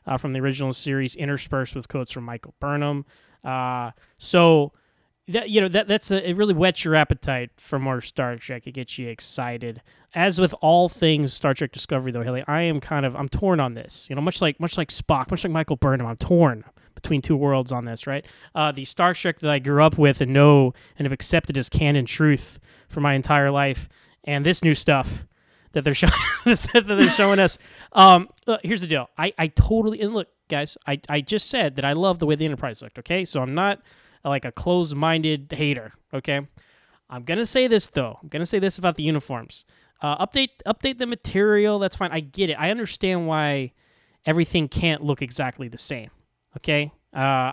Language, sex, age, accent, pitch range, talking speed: English, male, 20-39, American, 135-170 Hz, 210 wpm